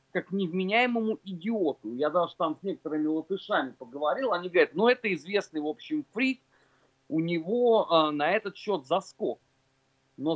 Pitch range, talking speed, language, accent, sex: 135-220 Hz, 150 wpm, Russian, native, male